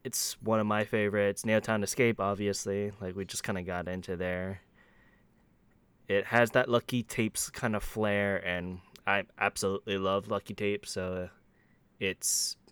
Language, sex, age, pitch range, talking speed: English, male, 20-39, 95-110 Hz, 150 wpm